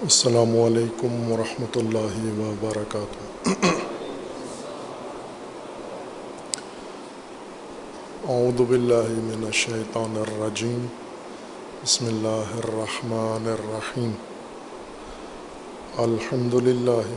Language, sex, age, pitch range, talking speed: Urdu, male, 50-69, 110-120 Hz, 50 wpm